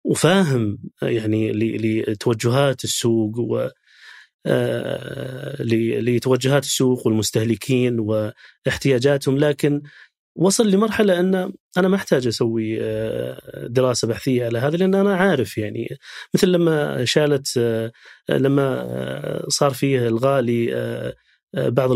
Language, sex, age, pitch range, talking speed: Arabic, male, 30-49, 115-160 Hz, 90 wpm